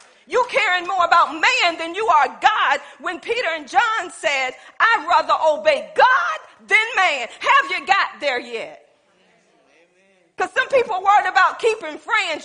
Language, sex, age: English, female, 40-59